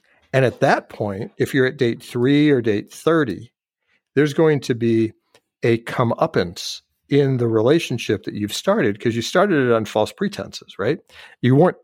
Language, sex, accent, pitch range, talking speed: English, male, American, 110-145 Hz, 170 wpm